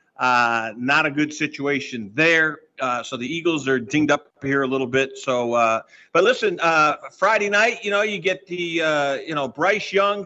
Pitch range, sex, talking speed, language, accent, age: 140-180 Hz, male, 200 wpm, English, American, 50-69